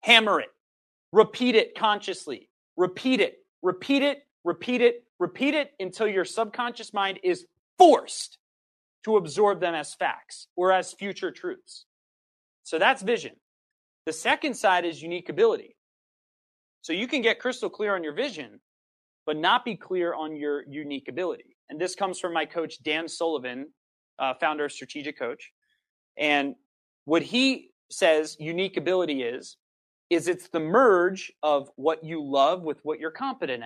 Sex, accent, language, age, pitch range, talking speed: male, American, English, 30-49, 155-225 Hz, 155 wpm